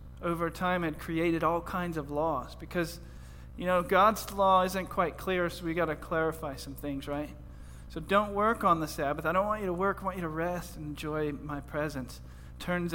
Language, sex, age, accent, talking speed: English, male, 40-59, American, 215 wpm